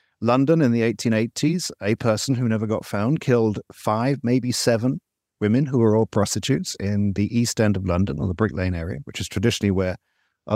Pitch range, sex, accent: 105-135 Hz, male, British